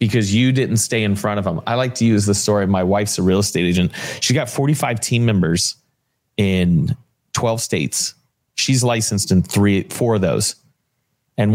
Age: 30-49